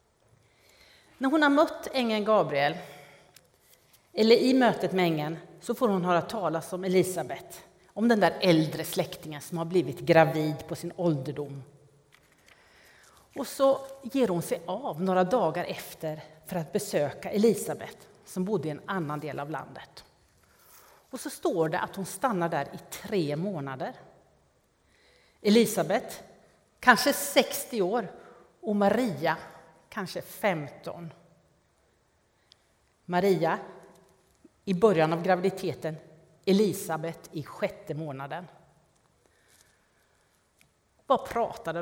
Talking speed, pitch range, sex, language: 115 wpm, 160-220 Hz, female, Swedish